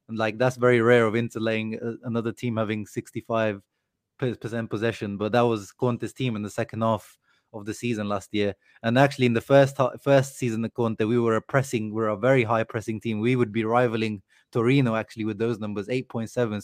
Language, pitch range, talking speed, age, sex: English, 110-125 Hz, 215 wpm, 20-39, male